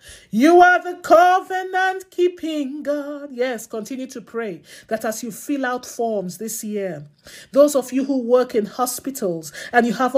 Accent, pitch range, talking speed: Nigerian, 200-275 Hz, 165 wpm